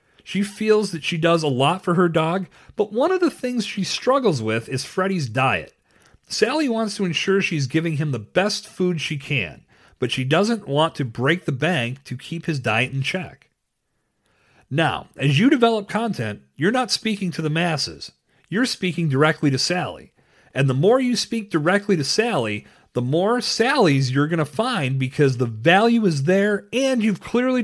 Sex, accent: male, American